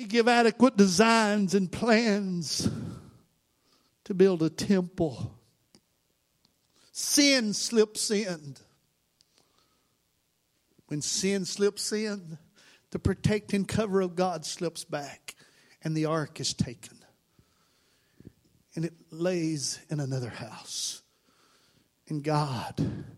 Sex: male